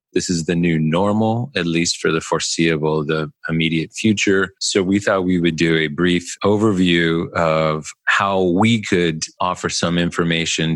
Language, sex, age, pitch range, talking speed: English, male, 40-59, 80-95 Hz, 160 wpm